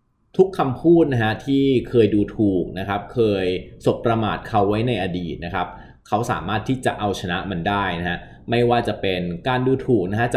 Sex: male